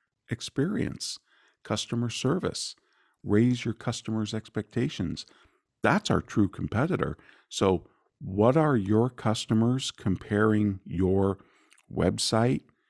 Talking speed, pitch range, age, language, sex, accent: 90 wpm, 100-130 Hz, 50-69, English, male, American